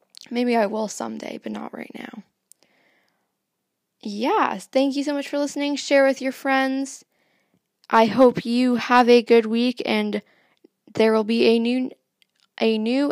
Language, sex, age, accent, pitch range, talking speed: English, female, 10-29, American, 210-265 Hz, 150 wpm